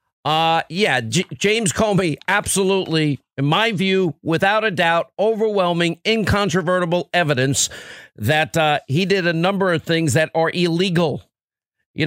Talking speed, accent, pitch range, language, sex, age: 135 wpm, American, 150-185 Hz, English, male, 50-69